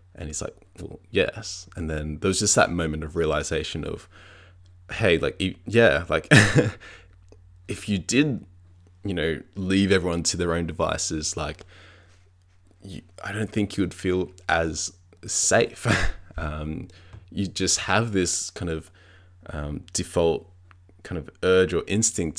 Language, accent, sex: English, Australian, male